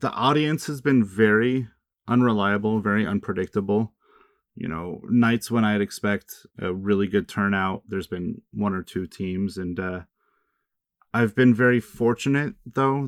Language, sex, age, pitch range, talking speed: English, male, 30-49, 100-115 Hz, 140 wpm